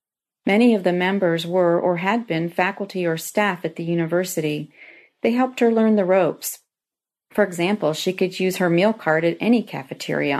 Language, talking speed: English, 180 wpm